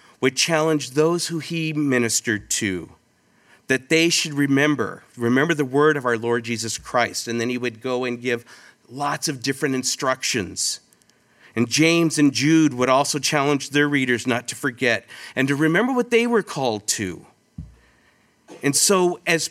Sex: male